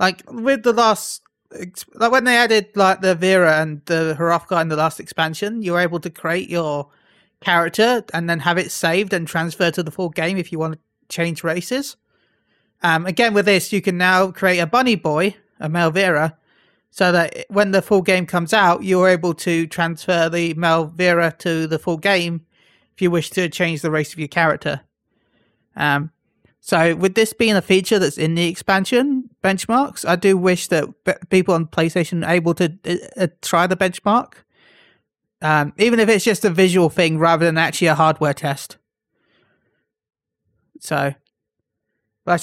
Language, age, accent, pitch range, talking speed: English, 30-49, British, 165-205 Hz, 180 wpm